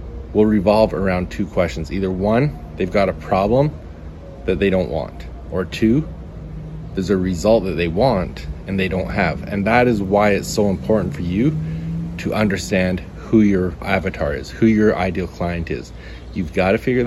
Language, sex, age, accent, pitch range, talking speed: English, male, 30-49, American, 85-105 Hz, 180 wpm